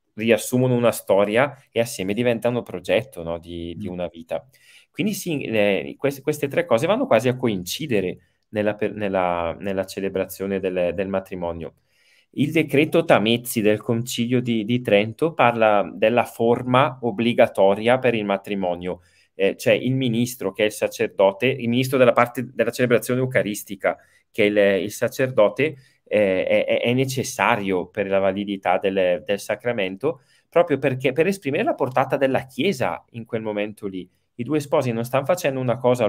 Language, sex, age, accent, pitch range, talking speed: Italian, male, 20-39, native, 100-130 Hz, 160 wpm